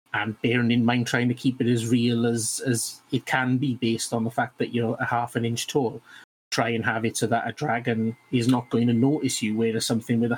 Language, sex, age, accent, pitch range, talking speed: English, male, 30-49, British, 115-130 Hz, 255 wpm